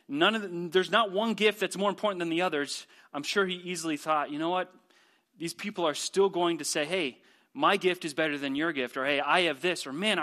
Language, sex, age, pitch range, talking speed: English, male, 30-49, 160-200 Hz, 250 wpm